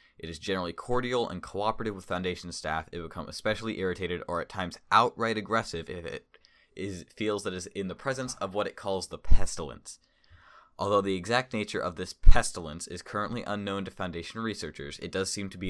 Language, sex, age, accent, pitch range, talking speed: English, male, 20-39, American, 85-105 Hz, 205 wpm